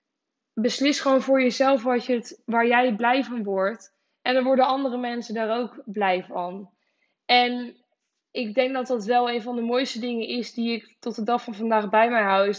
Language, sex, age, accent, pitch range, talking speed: Dutch, female, 10-29, Dutch, 215-245 Hz, 195 wpm